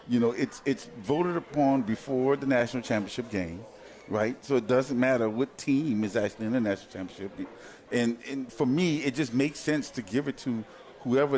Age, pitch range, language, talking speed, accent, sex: 40-59, 115-145 Hz, English, 195 wpm, American, male